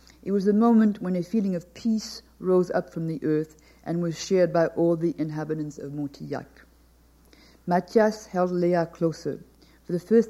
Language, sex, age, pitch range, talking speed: English, female, 50-69, 165-195 Hz, 175 wpm